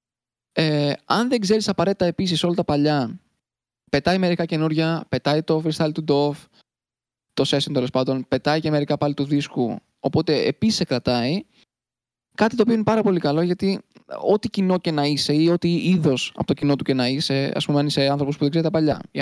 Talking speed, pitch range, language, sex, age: 205 wpm, 140-175 Hz, Greek, male, 20-39